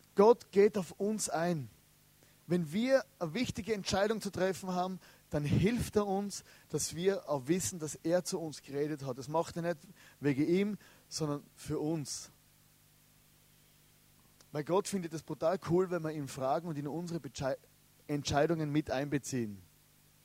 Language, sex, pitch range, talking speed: German, male, 140-185 Hz, 155 wpm